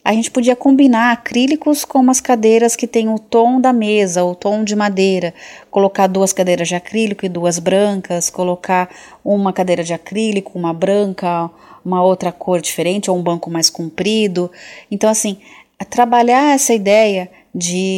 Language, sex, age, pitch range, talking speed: Portuguese, female, 30-49, 180-220 Hz, 160 wpm